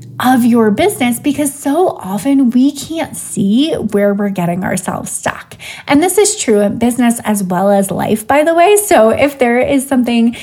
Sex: female